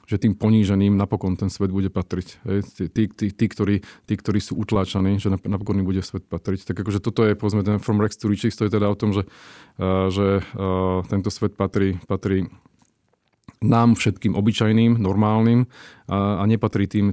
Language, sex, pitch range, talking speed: Slovak, male, 100-110 Hz, 180 wpm